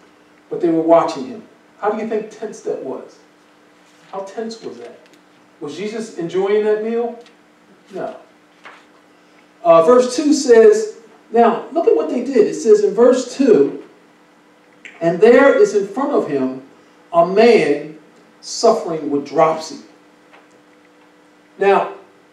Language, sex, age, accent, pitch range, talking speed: English, male, 40-59, American, 195-275 Hz, 135 wpm